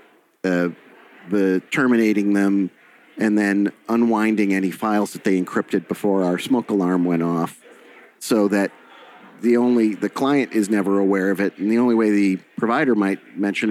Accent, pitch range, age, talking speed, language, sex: American, 85-105 Hz, 40-59, 160 wpm, English, male